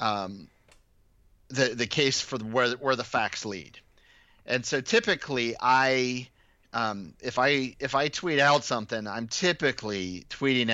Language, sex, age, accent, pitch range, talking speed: English, male, 30-49, American, 100-130 Hz, 140 wpm